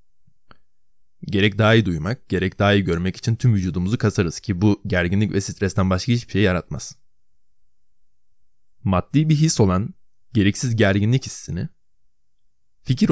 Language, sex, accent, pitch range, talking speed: Turkish, male, native, 95-120 Hz, 130 wpm